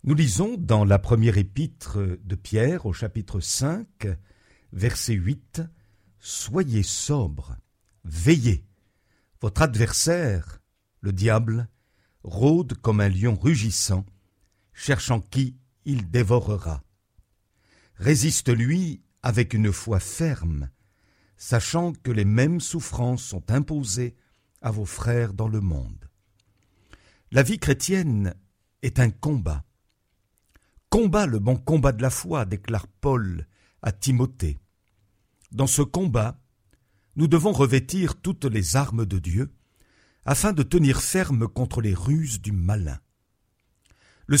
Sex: male